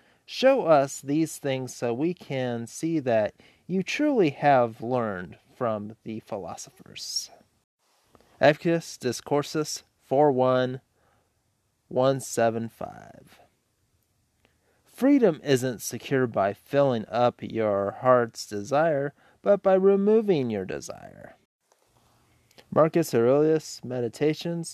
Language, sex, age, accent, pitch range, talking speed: English, male, 30-49, American, 115-155 Hz, 85 wpm